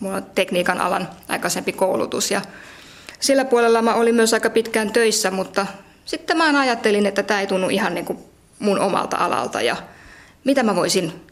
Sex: female